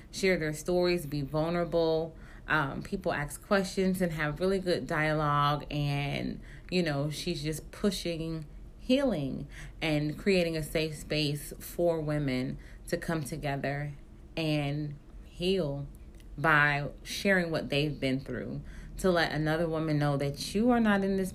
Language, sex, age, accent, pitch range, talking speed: English, female, 20-39, American, 145-180 Hz, 140 wpm